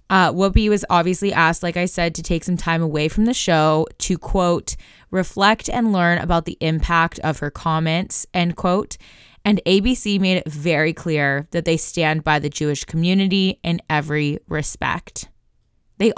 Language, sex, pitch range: English, female, 165-200 Hz